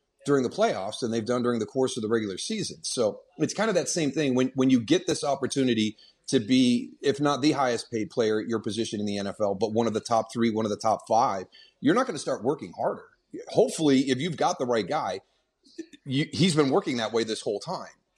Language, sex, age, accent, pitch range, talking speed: English, male, 30-49, American, 115-135 Hz, 245 wpm